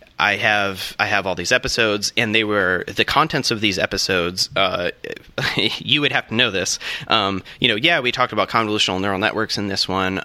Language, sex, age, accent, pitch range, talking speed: English, male, 30-49, American, 95-120 Hz, 205 wpm